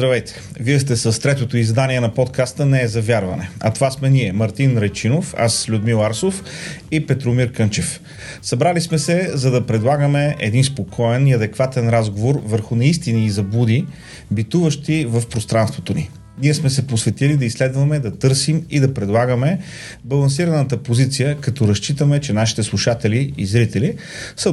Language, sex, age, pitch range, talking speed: Bulgarian, male, 30-49, 115-145 Hz, 155 wpm